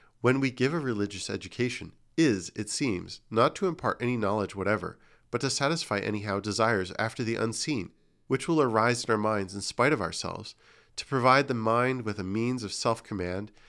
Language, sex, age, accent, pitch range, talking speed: English, male, 40-59, American, 105-135 Hz, 185 wpm